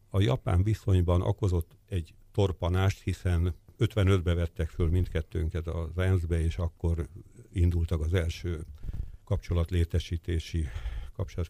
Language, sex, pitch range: Hungarian, male, 85-105 Hz